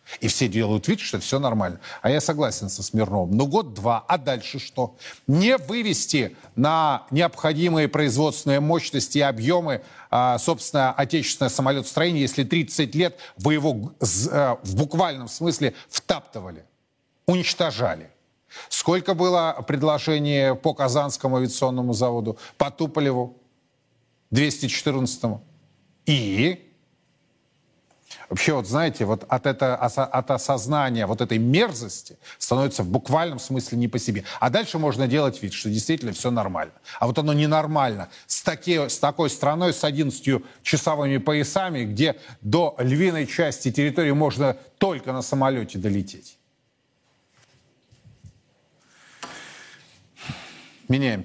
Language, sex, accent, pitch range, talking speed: Russian, male, native, 125-155 Hz, 115 wpm